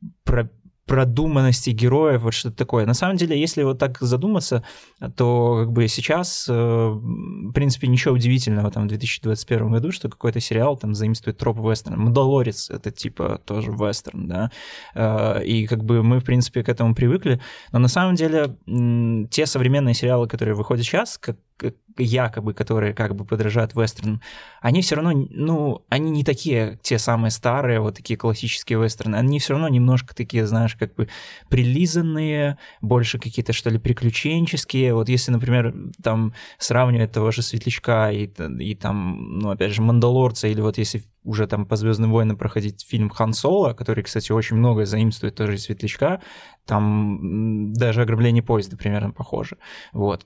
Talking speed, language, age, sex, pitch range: 160 wpm, Russian, 20-39, male, 110-130 Hz